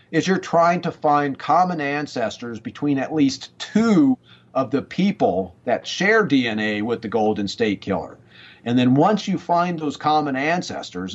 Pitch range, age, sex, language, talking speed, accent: 120-155 Hz, 50-69, male, English, 160 wpm, American